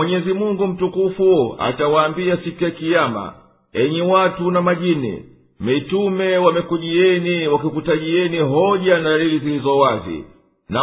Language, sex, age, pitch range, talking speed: Swahili, male, 50-69, 145-180 Hz, 105 wpm